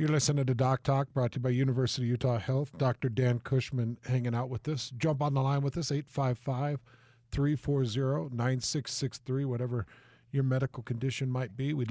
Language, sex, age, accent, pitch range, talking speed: English, male, 50-69, American, 125-150 Hz, 170 wpm